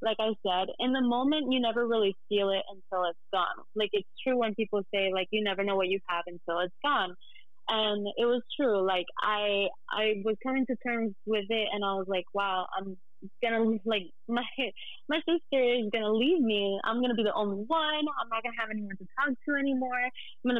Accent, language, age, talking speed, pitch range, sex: American, English, 20-39, 230 wpm, 200-250 Hz, female